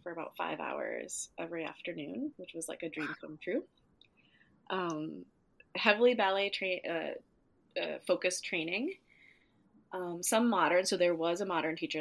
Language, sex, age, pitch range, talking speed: English, female, 20-39, 165-210 Hz, 150 wpm